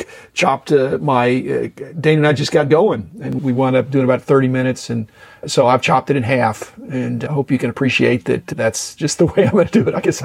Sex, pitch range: male, 120-145 Hz